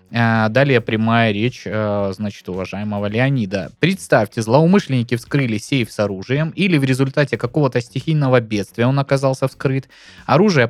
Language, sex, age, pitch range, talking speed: Russian, male, 20-39, 105-140 Hz, 125 wpm